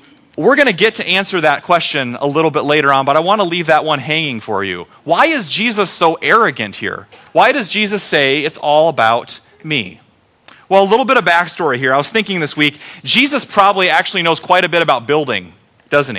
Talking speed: 220 wpm